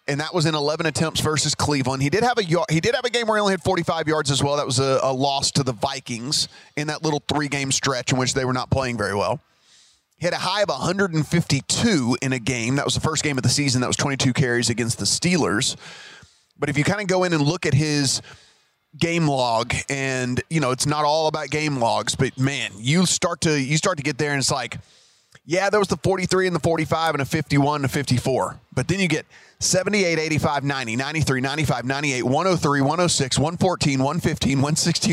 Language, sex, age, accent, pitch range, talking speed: English, male, 30-49, American, 135-160 Hz, 250 wpm